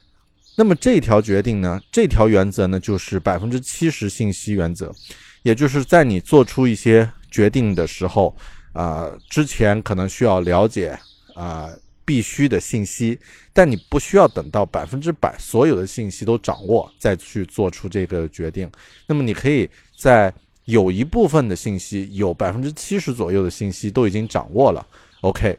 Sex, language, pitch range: male, Chinese, 95-125 Hz